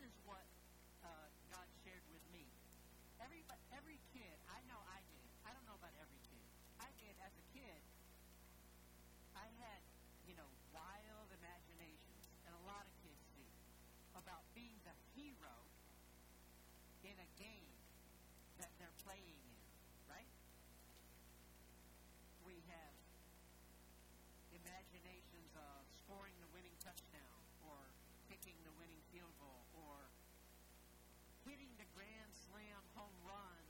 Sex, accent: male, American